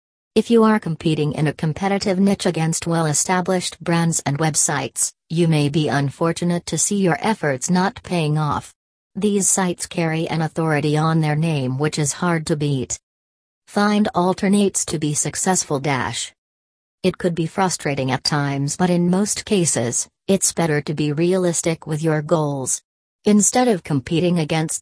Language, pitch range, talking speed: English, 145-175 Hz, 155 wpm